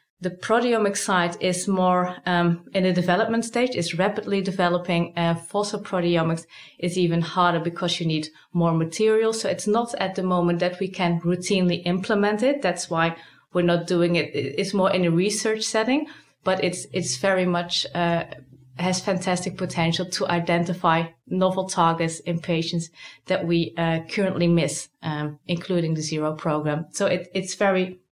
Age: 30-49